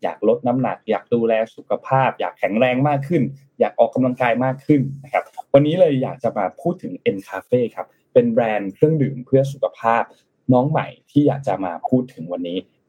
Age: 10-29